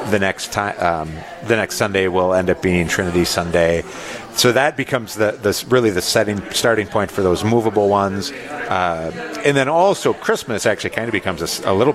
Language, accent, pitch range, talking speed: English, American, 90-120 Hz, 195 wpm